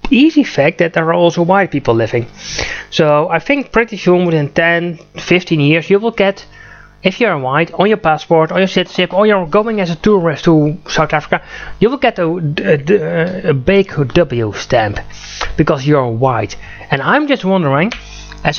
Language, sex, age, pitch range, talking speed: English, male, 30-49, 155-205 Hz, 180 wpm